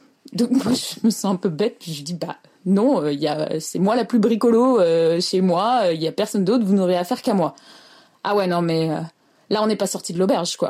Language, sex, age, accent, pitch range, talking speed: French, female, 20-39, French, 180-245 Hz, 270 wpm